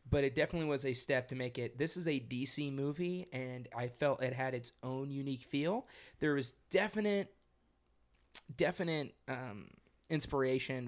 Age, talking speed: 20-39, 160 wpm